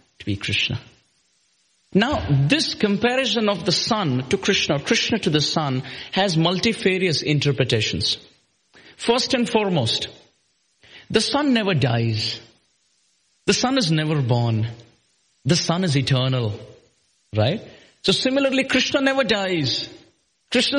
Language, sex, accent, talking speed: English, male, Indian, 120 wpm